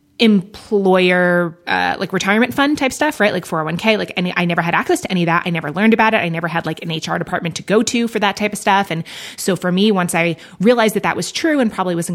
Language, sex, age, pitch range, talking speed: English, female, 20-39, 175-215 Hz, 265 wpm